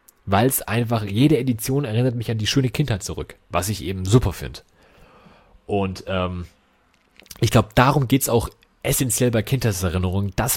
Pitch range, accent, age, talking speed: 100-130 Hz, German, 30-49, 165 wpm